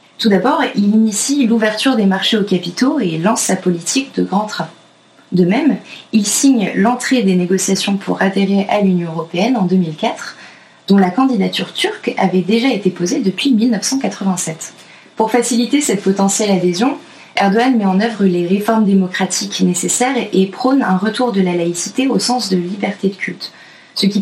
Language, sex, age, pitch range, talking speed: French, female, 20-39, 190-240 Hz, 170 wpm